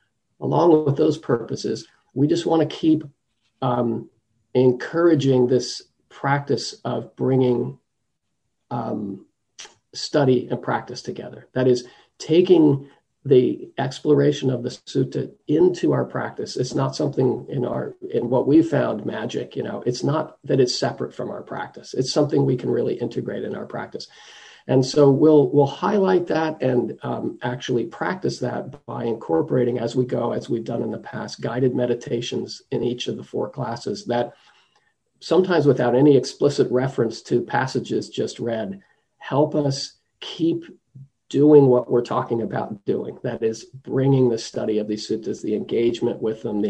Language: English